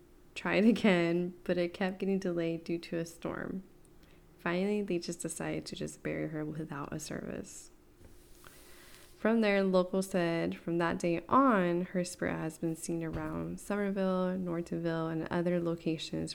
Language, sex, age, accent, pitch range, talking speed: English, female, 20-39, American, 165-190 Hz, 155 wpm